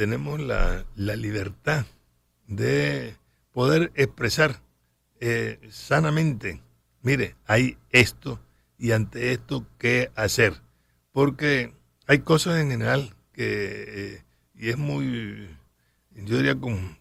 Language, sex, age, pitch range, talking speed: Spanish, male, 60-79, 95-135 Hz, 105 wpm